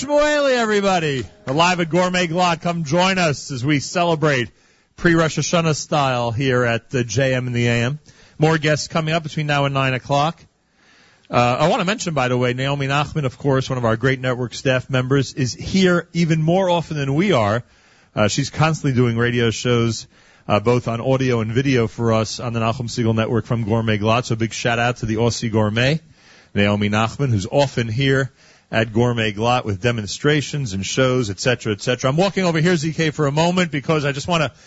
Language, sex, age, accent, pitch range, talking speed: English, male, 40-59, American, 120-165 Hz, 200 wpm